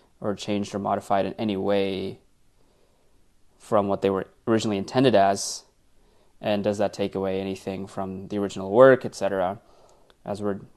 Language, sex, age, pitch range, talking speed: English, male, 20-39, 100-110 Hz, 155 wpm